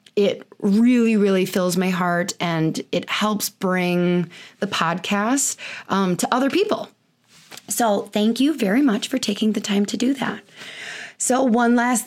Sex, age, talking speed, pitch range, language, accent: female, 20-39, 155 wpm, 175-230 Hz, English, American